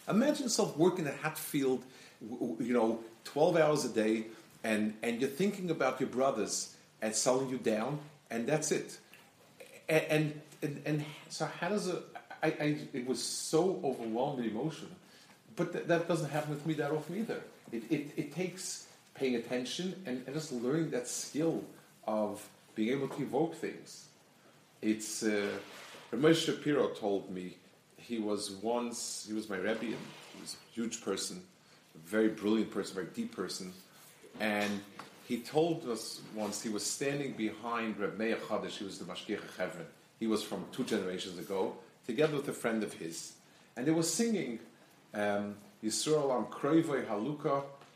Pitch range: 110-155 Hz